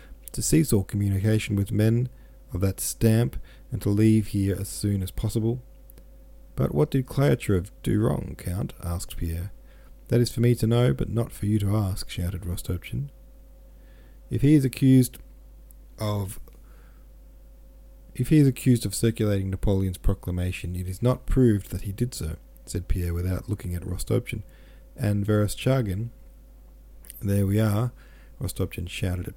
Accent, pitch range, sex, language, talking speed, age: Australian, 90-115 Hz, male, English, 155 wpm, 40-59